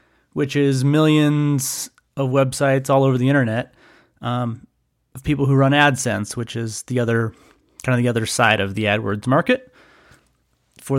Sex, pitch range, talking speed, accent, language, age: male, 125-155 Hz, 160 wpm, American, English, 30-49